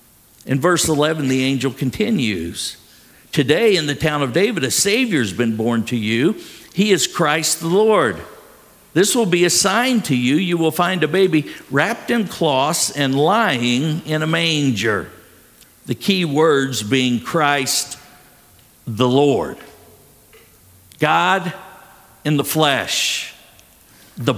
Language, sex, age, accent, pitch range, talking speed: English, male, 50-69, American, 140-190 Hz, 140 wpm